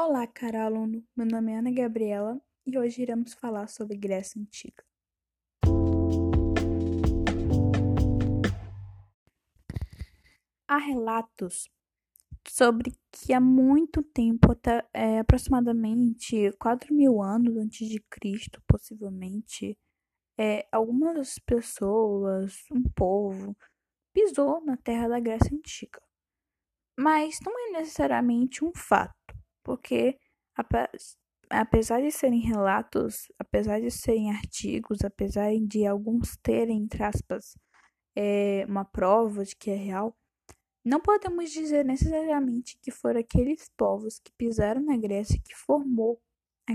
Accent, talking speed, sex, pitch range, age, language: Brazilian, 110 wpm, female, 205-275 Hz, 10-29, Portuguese